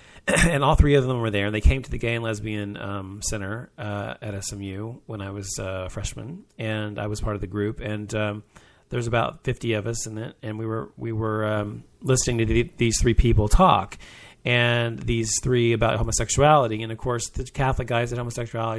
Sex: male